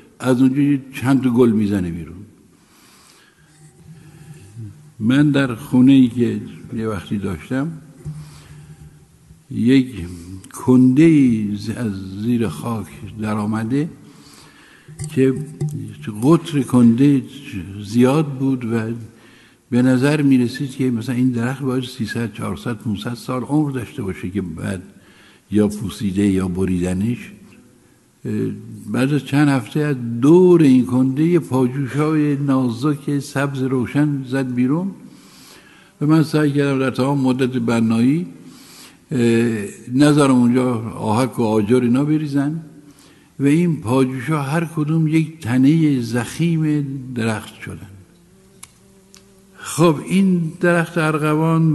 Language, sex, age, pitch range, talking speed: Persian, male, 60-79, 115-150 Hz, 100 wpm